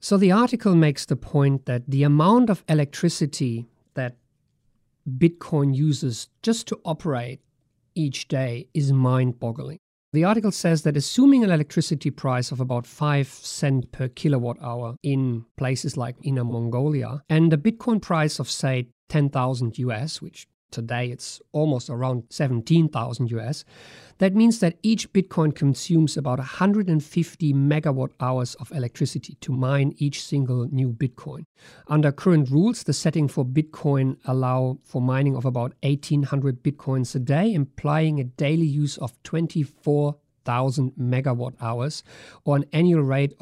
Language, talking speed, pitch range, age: English, 140 wpm, 130-155 Hz, 50-69